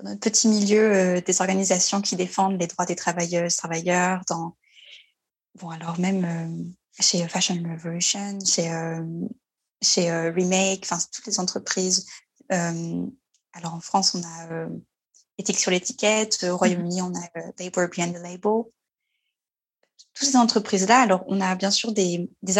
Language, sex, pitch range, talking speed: French, female, 180-225 Hz, 160 wpm